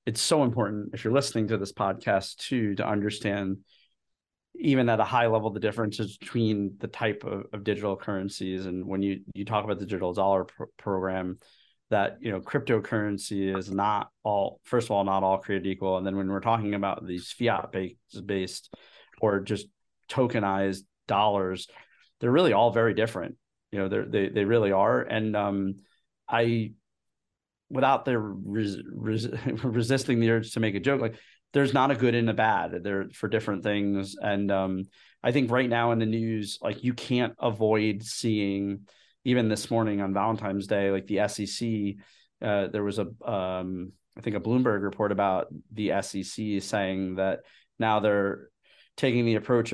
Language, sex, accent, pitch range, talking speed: English, male, American, 100-115 Hz, 175 wpm